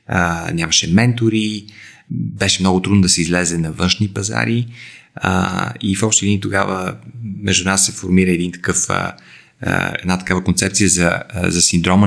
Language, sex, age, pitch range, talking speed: Bulgarian, male, 30-49, 90-105 Hz, 155 wpm